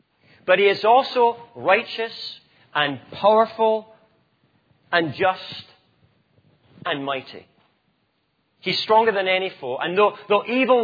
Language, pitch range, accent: English, 140-200 Hz, British